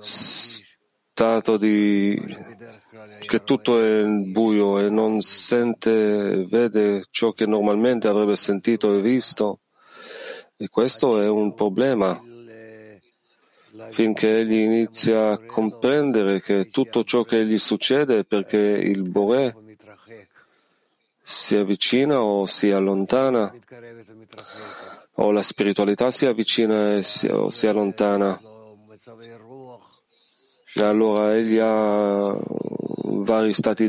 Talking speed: 105 wpm